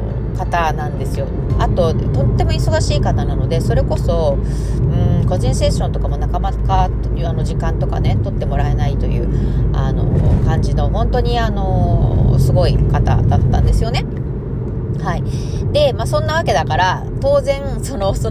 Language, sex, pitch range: Japanese, female, 105-130 Hz